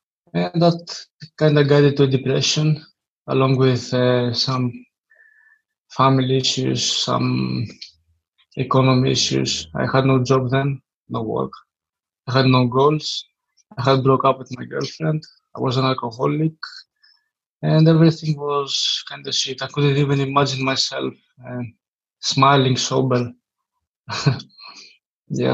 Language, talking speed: English, 125 wpm